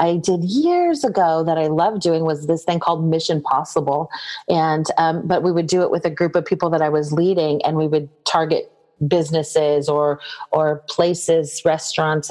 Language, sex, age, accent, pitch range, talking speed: English, female, 30-49, American, 155-185 Hz, 190 wpm